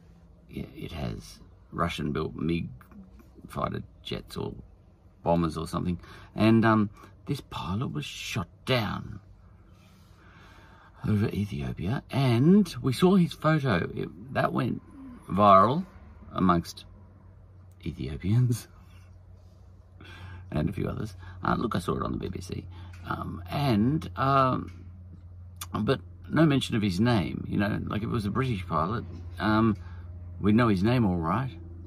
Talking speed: 130 wpm